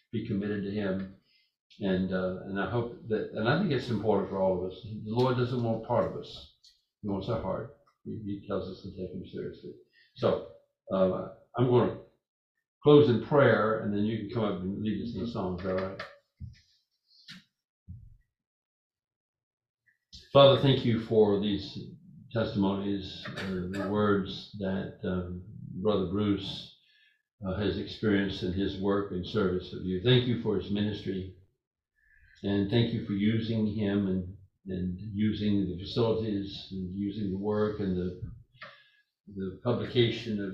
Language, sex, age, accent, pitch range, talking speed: English, male, 60-79, American, 95-120 Hz, 160 wpm